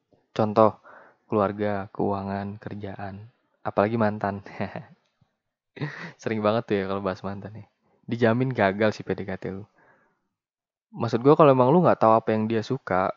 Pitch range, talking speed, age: 100-115 Hz, 135 wpm, 20-39